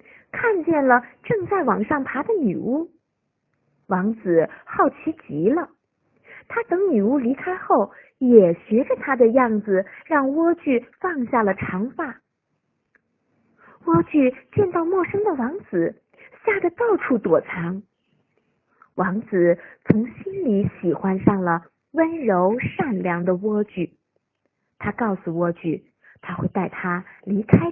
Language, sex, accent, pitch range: Chinese, female, native, 195-315 Hz